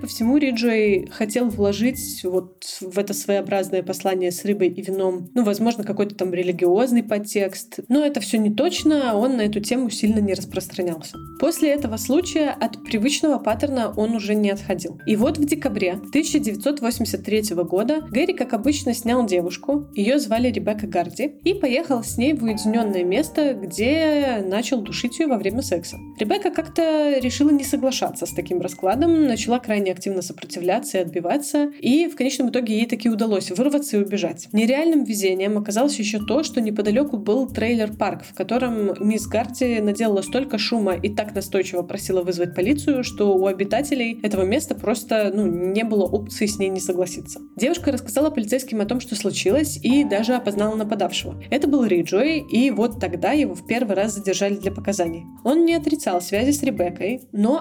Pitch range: 195-265 Hz